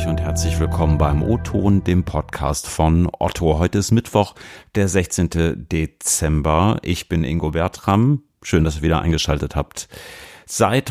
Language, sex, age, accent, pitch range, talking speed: German, male, 40-59, German, 80-100 Hz, 145 wpm